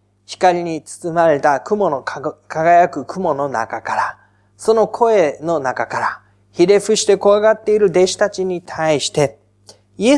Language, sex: Japanese, male